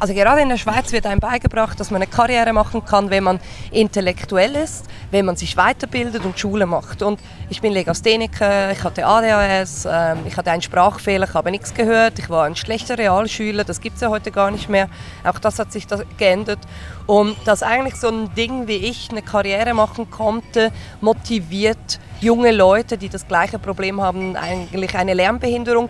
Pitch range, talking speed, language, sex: 195-230 Hz, 190 wpm, German, female